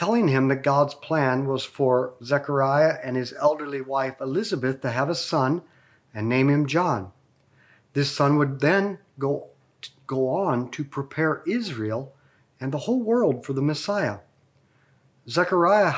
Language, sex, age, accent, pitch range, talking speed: English, male, 50-69, American, 130-165 Hz, 145 wpm